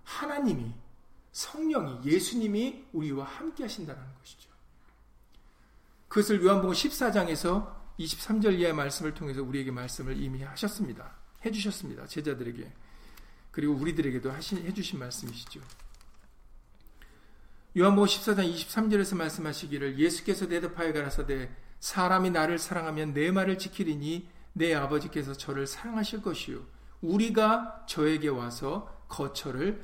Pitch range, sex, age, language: 140-205 Hz, male, 50-69, Korean